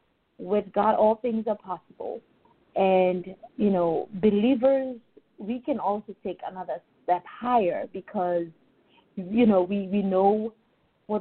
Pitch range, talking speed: 185-245 Hz, 130 wpm